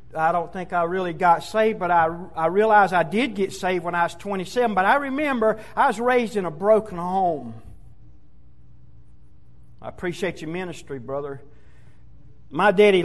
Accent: American